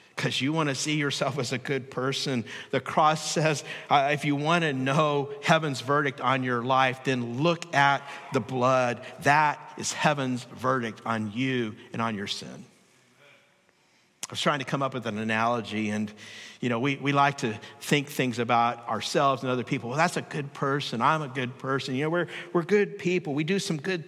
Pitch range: 125-150 Hz